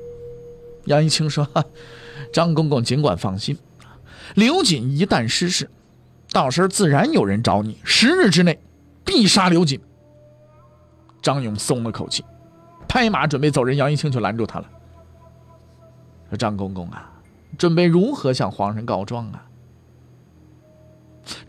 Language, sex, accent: Chinese, male, native